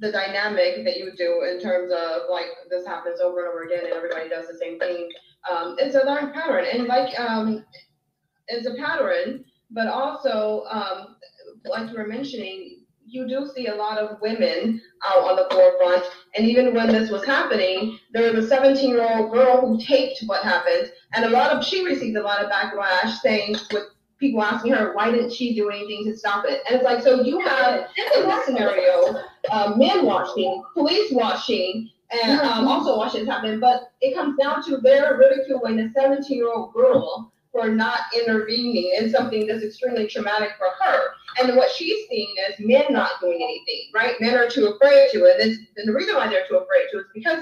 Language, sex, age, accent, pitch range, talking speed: English, female, 30-49, American, 210-270 Hz, 200 wpm